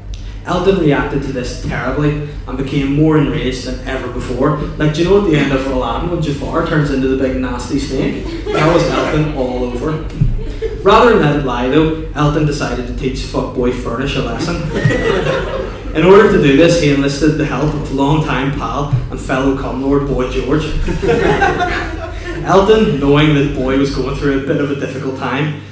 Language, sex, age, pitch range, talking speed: English, male, 20-39, 130-155 Hz, 185 wpm